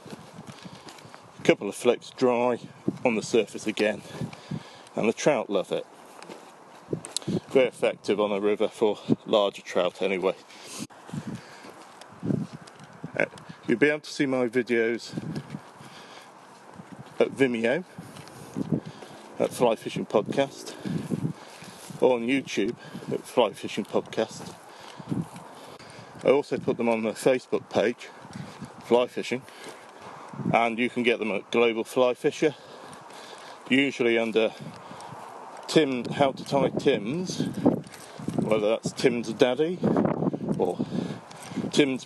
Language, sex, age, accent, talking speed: English, male, 40-59, British, 105 wpm